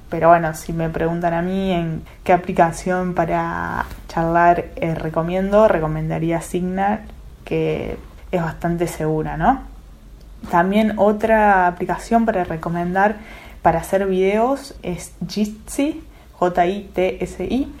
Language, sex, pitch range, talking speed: Spanish, female, 165-195 Hz, 110 wpm